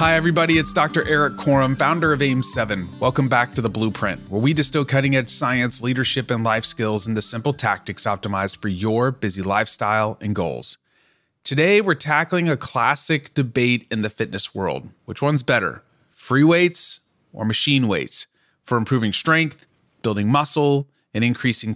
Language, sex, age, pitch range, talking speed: English, male, 30-49, 115-150 Hz, 165 wpm